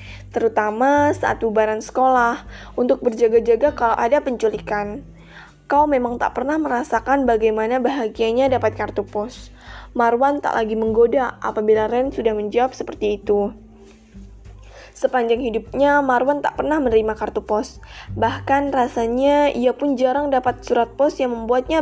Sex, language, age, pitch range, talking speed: female, Indonesian, 20-39, 220-265 Hz, 130 wpm